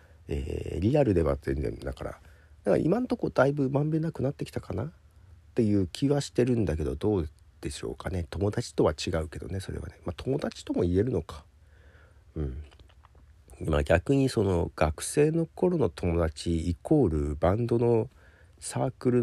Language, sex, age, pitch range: Japanese, male, 40-59, 80-110 Hz